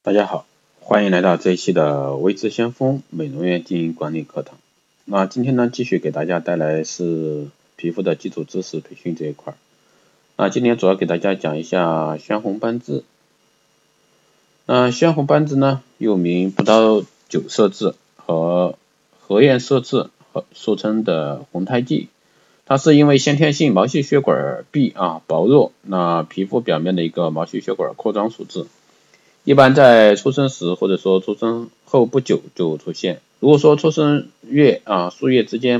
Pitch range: 90-125 Hz